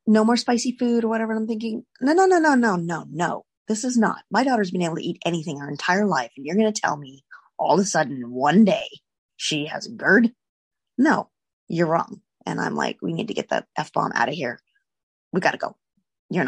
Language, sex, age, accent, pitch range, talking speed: English, female, 30-49, American, 165-245 Hz, 240 wpm